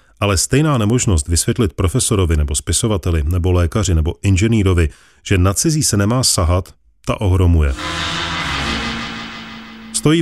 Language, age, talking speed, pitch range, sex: Czech, 30-49, 115 wpm, 85-120 Hz, male